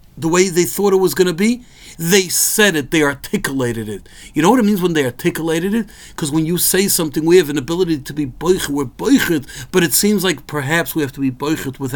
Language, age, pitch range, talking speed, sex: English, 60-79, 150-215 Hz, 245 wpm, male